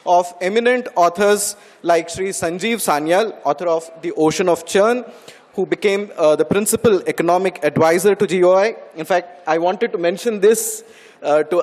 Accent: Indian